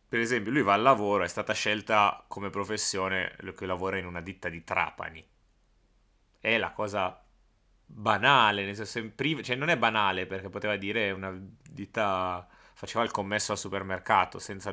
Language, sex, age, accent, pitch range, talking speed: Italian, male, 30-49, native, 100-125 Hz, 150 wpm